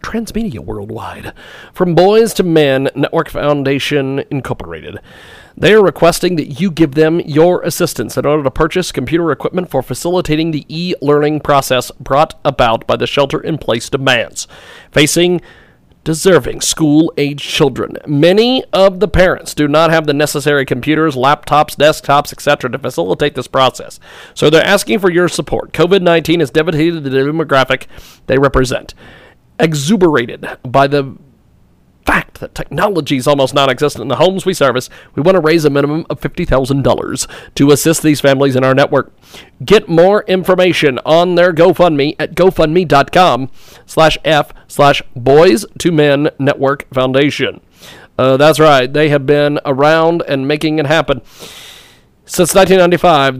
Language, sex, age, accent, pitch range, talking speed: English, male, 40-59, American, 140-170 Hz, 145 wpm